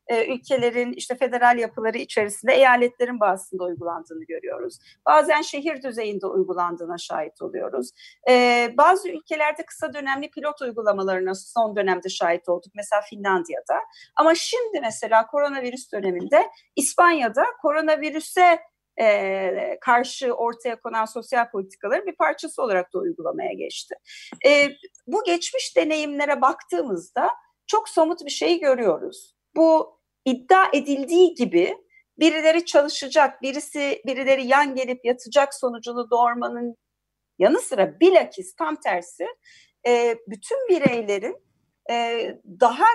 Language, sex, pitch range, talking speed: Turkish, female, 230-325 Hz, 110 wpm